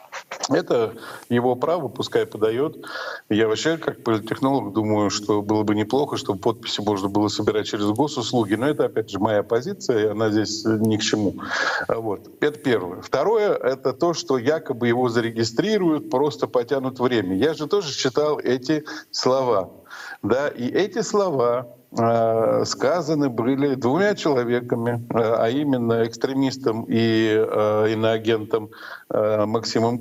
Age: 50-69